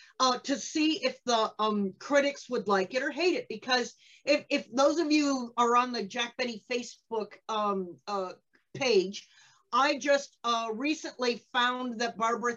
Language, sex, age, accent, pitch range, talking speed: English, female, 50-69, American, 225-280 Hz, 165 wpm